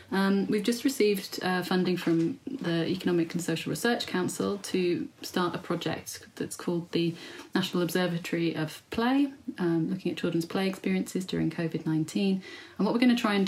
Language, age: English, 30-49